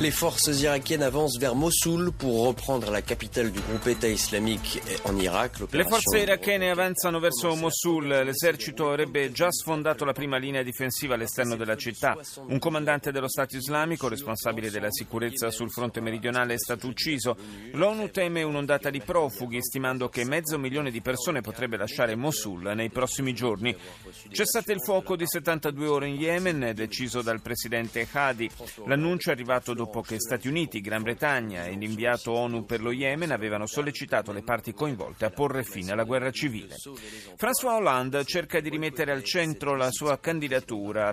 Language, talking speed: Italian, 145 wpm